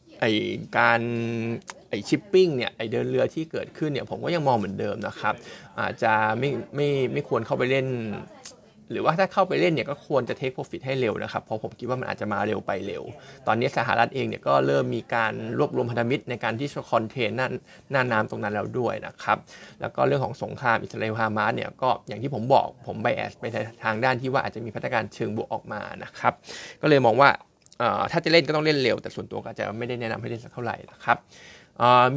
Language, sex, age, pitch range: Thai, male, 20-39, 115-145 Hz